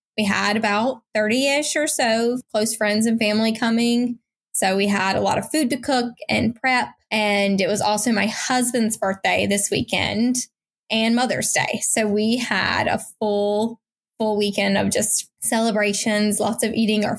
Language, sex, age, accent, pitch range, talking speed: English, female, 10-29, American, 205-235 Hz, 170 wpm